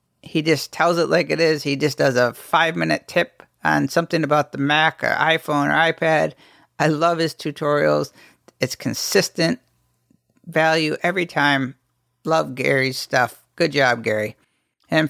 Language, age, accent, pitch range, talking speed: English, 50-69, American, 140-170 Hz, 150 wpm